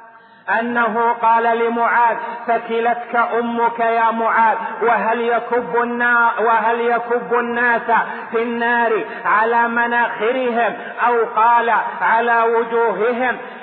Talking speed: 90 wpm